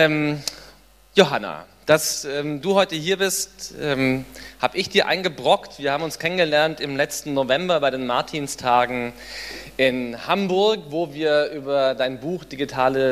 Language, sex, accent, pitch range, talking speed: German, male, German, 130-165 Hz, 140 wpm